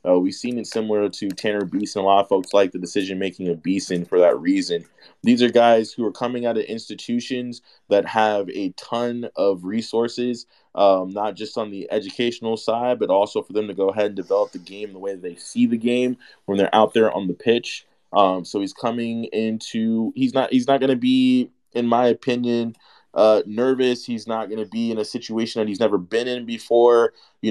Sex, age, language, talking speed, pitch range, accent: male, 20-39, English, 220 wpm, 100-125 Hz, American